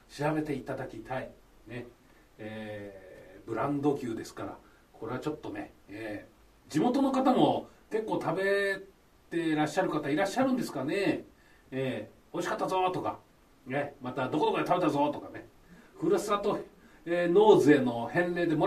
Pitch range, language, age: 140-210 Hz, Japanese, 40-59